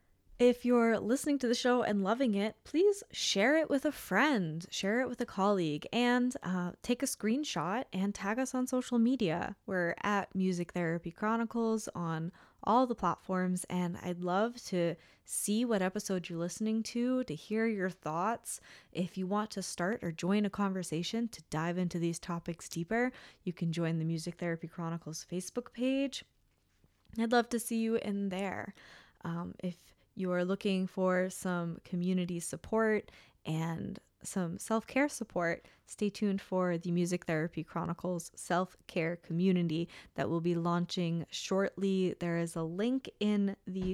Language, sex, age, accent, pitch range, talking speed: English, female, 20-39, American, 170-220 Hz, 160 wpm